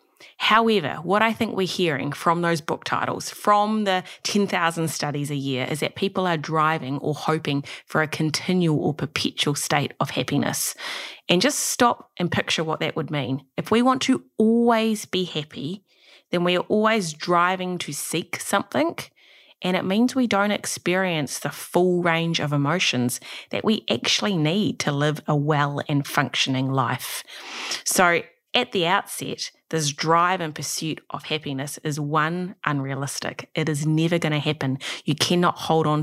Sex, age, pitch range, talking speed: female, 20-39, 145-185 Hz, 165 wpm